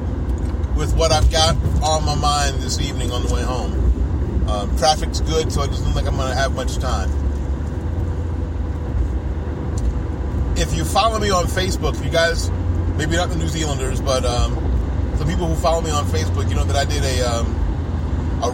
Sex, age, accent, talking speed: male, 30-49, American, 180 wpm